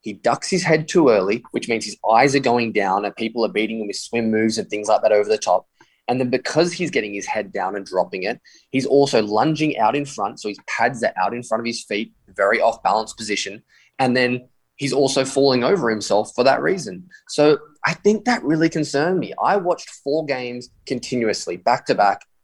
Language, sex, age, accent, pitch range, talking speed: English, male, 20-39, Australian, 110-140 Hz, 215 wpm